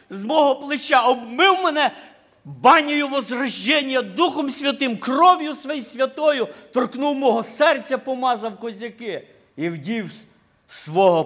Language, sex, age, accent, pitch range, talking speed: Ukrainian, male, 50-69, native, 170-260 Hz, 105 wpm